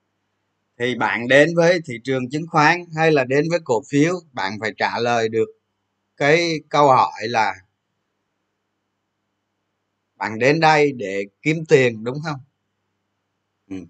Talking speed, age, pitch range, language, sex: 140 wpm, 20-39, 100-145 Hz, Vietnamese, male